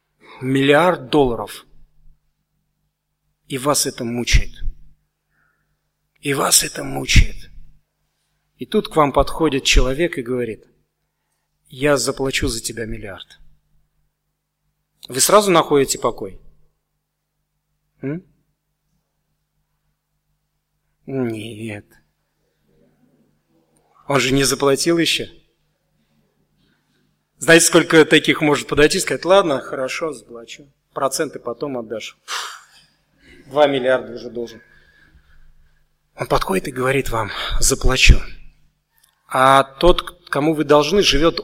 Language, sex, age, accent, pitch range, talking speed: Russian, male, 40-59, native, 130-155 Hz, 90 wpm